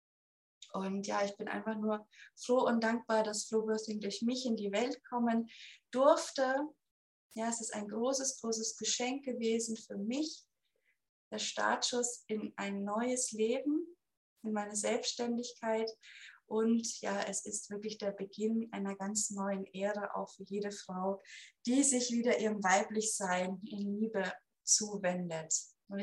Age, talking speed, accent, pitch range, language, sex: 20-39, 145 wpm, German, 205-245 Hz, German, female